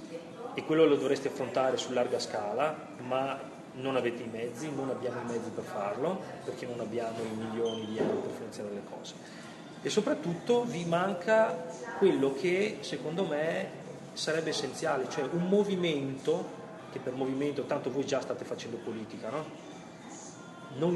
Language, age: Italian, 30-49